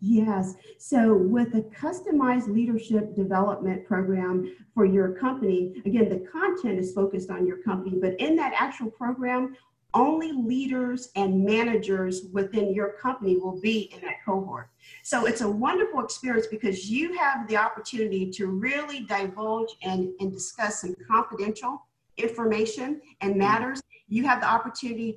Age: 40-59